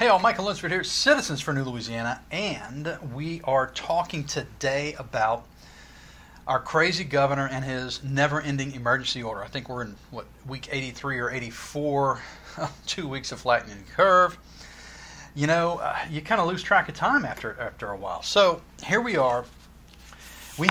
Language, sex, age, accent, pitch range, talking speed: English, male, 40-59, American, 125-165 Hz, 170 wpm